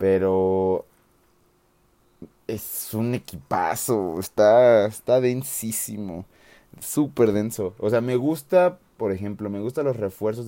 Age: 30-49